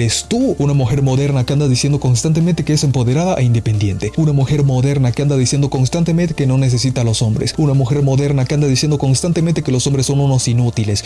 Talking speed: 210 wpm